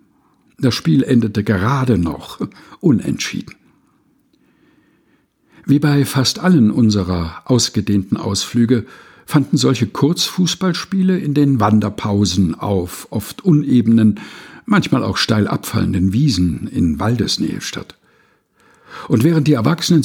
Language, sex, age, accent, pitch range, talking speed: German, male, 60-79, German, 100-140 Hz, 100 wpm